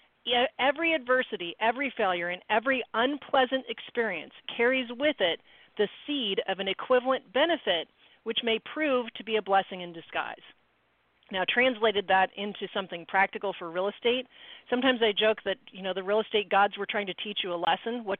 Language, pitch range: English, 185-245 Hz